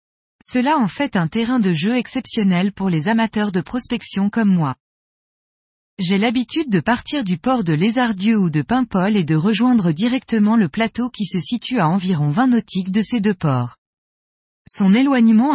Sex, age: female, 20-39